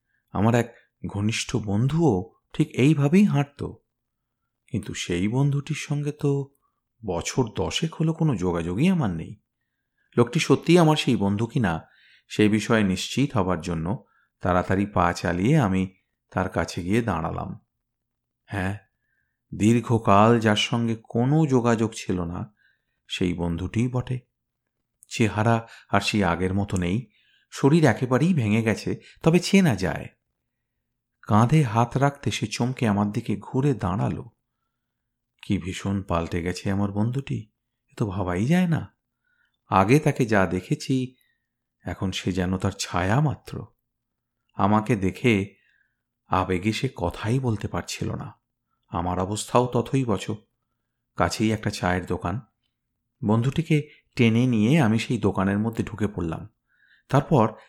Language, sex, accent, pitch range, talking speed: Bengali, male, native, 95-130 Hz, 120 wpm